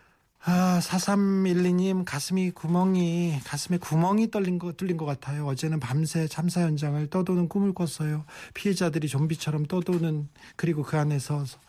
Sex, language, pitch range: male, Korean, 140-180 Hz